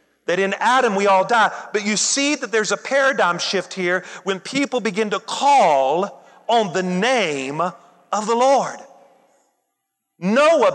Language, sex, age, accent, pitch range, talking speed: English, male, 40-59, American, 210-280 Hz, 150 wpm